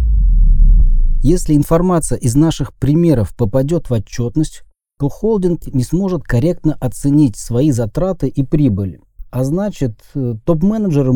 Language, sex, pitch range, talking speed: Russian, male, 105-150 Hz, 115 wpm